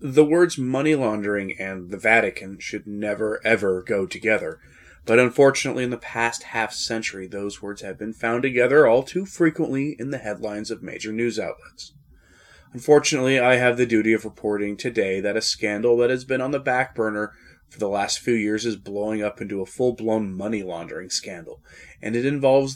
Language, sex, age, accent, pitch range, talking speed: English, male, 30-49, American, 105-130 Hz, 185 wpm